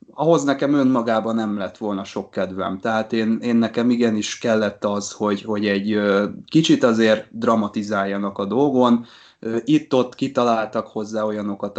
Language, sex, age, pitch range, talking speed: Hungarian, male, 20-39, 105-120 Hz, 140 wpm